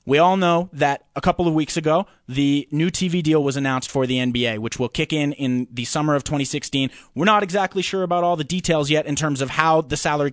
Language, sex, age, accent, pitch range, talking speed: English, male, 20-39, American, 130-165 Hz, 245 wpm